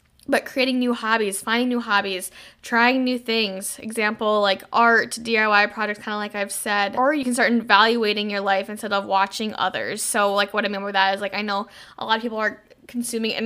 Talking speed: 220 wpm